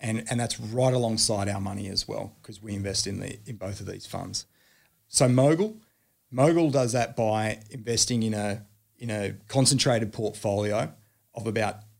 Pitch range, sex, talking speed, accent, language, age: 105-125 Hz, male, 170 wpm, Australian, English, 30-49